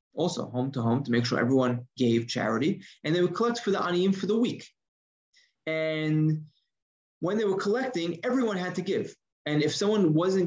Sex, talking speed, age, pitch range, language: male, 190 wpm, 20-39, 125-170 Hz, English